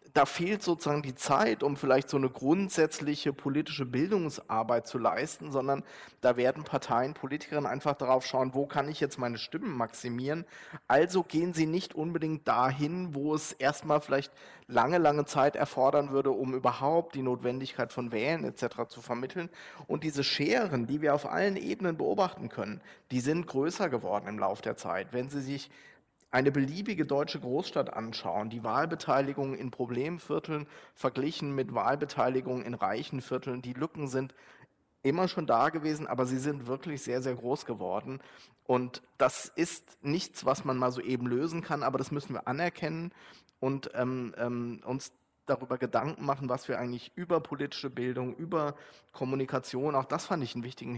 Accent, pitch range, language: German, 130-155 Hz, German